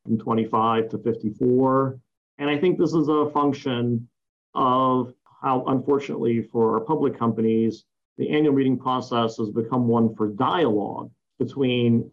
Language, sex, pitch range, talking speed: English, male, 115-140 Hz, 140 wpm